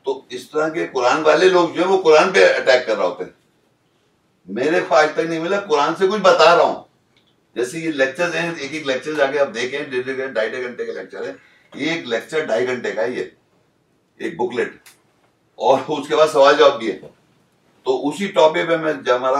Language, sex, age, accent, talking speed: English, male, 60-79, Indian, 175 wpm